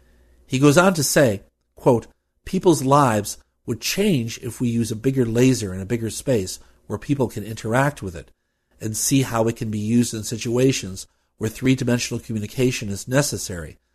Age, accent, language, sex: 50-69, American, English, male